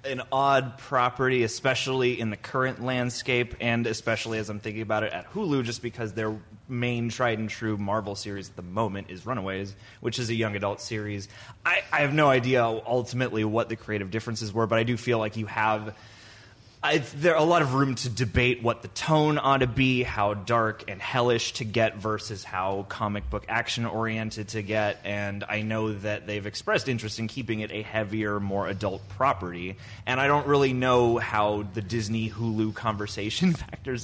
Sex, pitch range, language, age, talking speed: male, 105-125 Hz, English, 20-39, 185 wpm